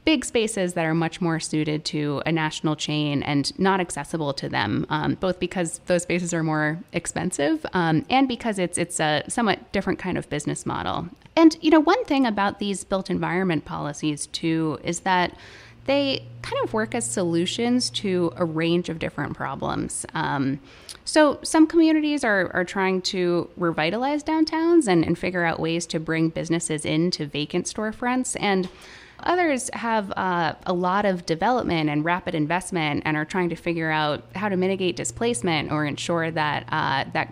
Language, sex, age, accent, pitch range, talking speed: English, female, 20-39, American, 160-220 Hz, 175 wpm